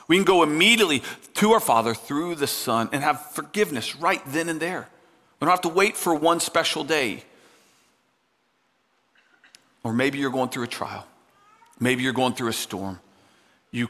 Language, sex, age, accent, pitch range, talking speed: English, male, 40-59, American, 120-170 Hz, 175 wpm